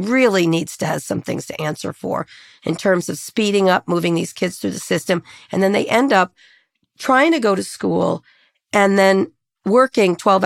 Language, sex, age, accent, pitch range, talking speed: English, female, 40-59, American, 180-245 Hz, 195 wpm